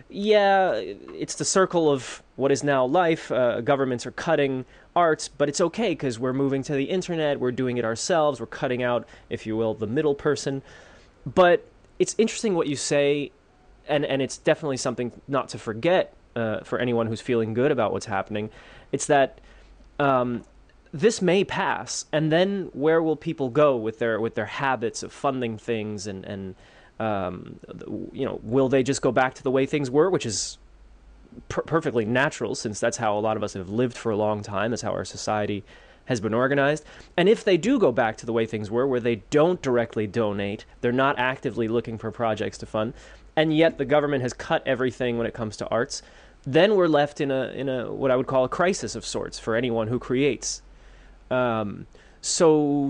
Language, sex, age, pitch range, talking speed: English, male, 20-39, 115-150 Hz, 200 wpm